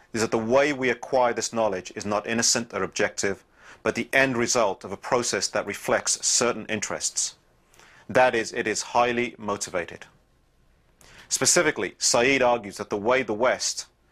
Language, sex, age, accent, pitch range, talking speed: English, male, 30-49, British, 100-120 Hz, 160 wpm